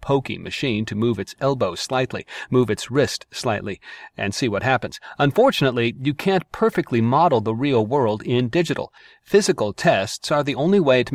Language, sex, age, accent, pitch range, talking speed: English, male, 40-59, American, 110-145 Hz, 170 wpm